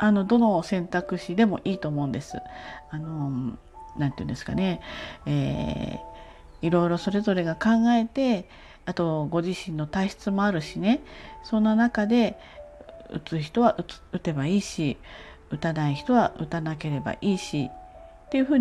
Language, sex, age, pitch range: Japanese, female, 40-59, 155-215 Hz